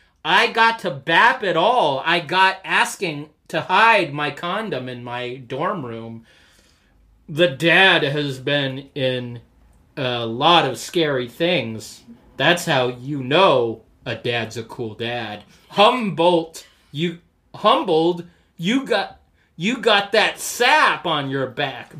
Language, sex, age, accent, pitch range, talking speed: English, male, 30-49, American, 135-190 Hz, 130 wpm